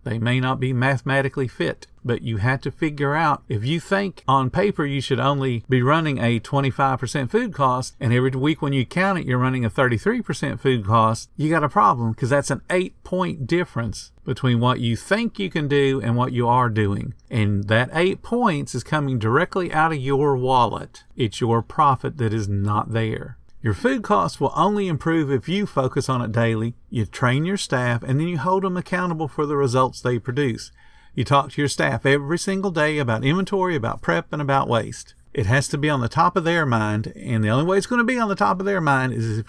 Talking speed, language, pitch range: 225 wpm, English, 120-165 Hz